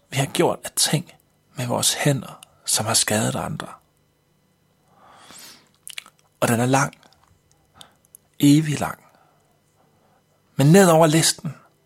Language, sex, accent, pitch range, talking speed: Danish, male, native, 135-160 Hz, 110 wpm